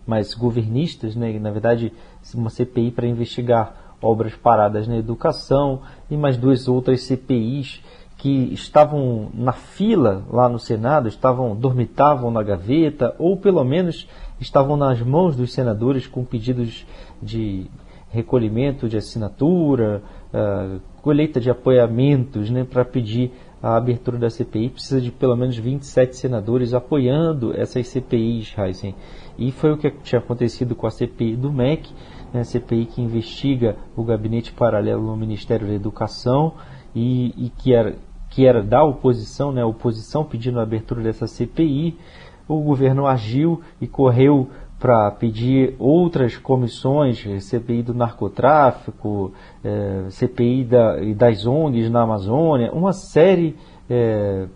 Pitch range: 115-135 Hz